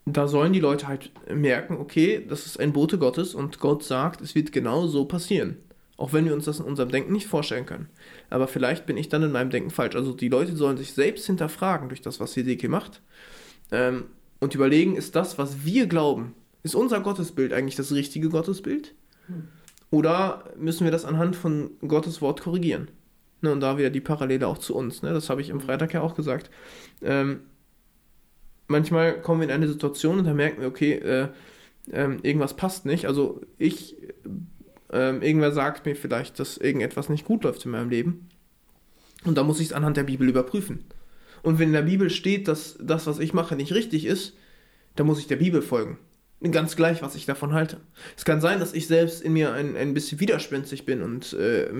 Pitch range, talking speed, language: 140-170 Hz, 205 wpm, German